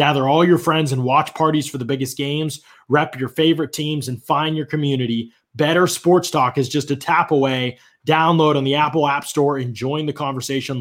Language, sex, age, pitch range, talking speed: English, male, 20-39, 115-140 Hz, 205 wpm